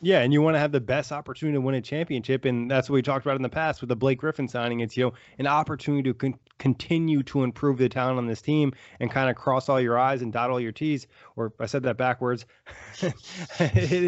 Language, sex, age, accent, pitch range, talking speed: English, male, 20-39, American, 120-140 Hz, 245 wpm